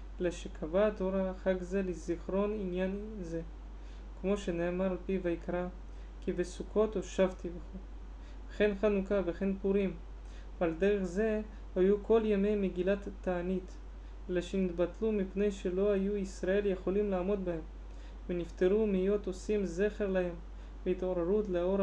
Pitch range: 175-200 Hz